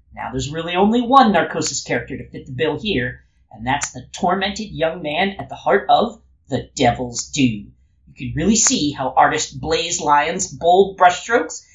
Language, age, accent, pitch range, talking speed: English, 40-59, American, 130-205 Hz, 180 wpm